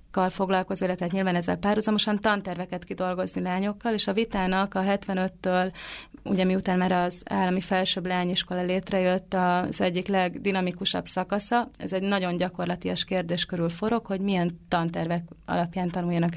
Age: 30-49